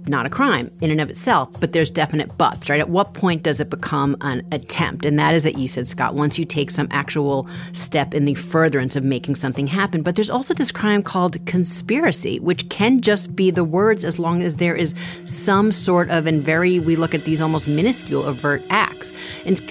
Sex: female